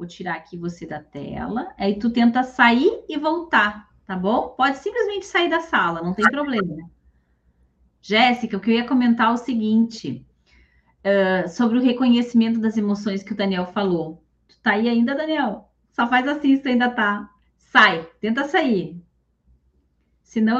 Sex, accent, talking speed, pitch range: female, Brazilian, 165 wpm, 180-235 Hz